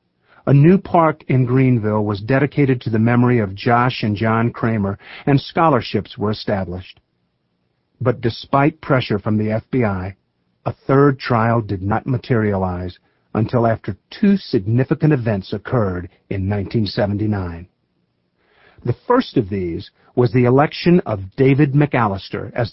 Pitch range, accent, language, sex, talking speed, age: 110-145 Hz, American, English, male, 130 wpm, 50-69